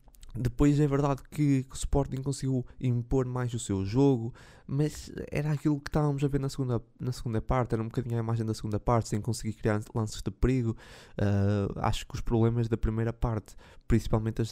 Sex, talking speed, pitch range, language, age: male, 195 wpm, 110-130 Hz, Portuguese, 20-39